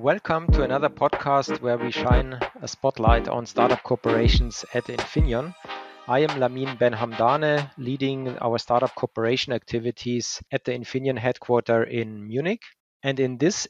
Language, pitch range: English, 120-140 Hz